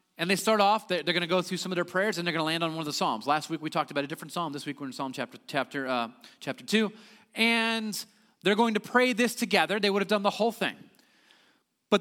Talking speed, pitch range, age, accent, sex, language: 280 wpm, 155-225 Hz, 30-49, American, male, English